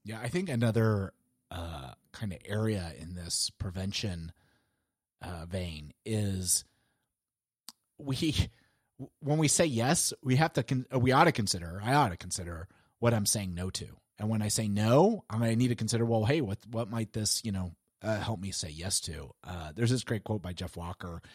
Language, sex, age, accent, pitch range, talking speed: English, male, 30-49, American, 95-130 Hz, 190 wpm